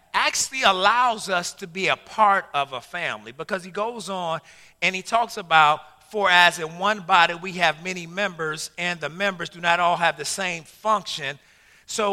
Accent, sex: American, male